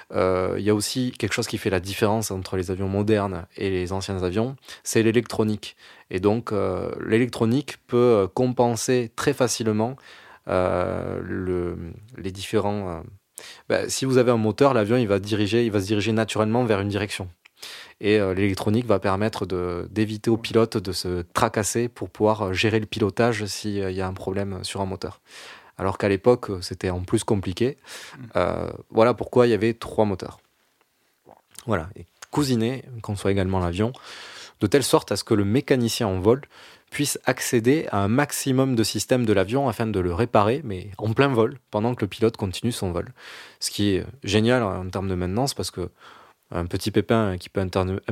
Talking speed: 185 wpm